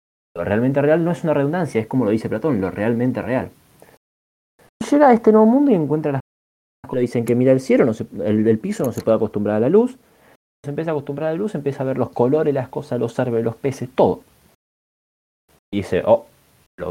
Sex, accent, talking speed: male, Argentinian, 220 wpm